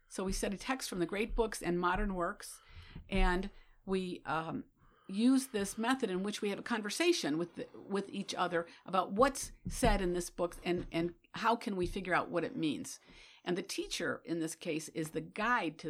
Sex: female